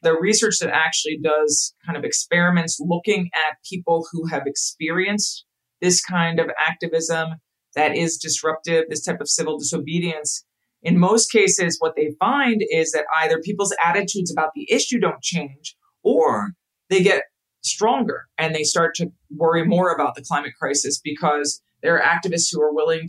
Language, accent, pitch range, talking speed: English, American, 150-185 Hz, 165 wpm